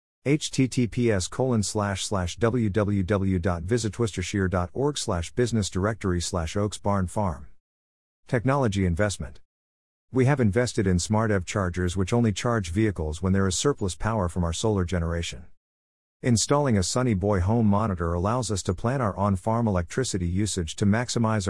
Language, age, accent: English, 50-69, American